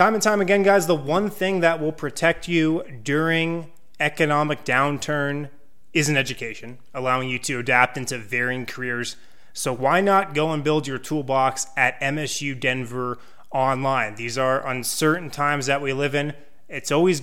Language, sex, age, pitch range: English, male, 20-39, 130-155 Hz